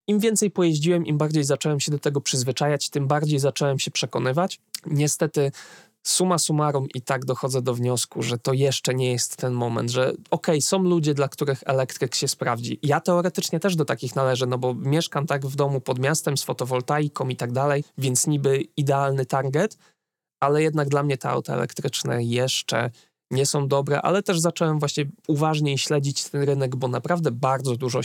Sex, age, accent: male, 20-39, native